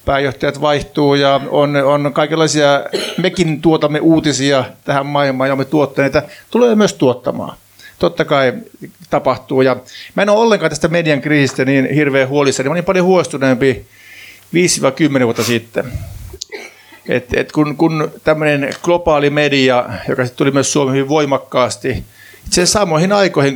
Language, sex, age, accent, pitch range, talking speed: Finnish, male, 50-69, native, 130-155 Hz, 130 wpm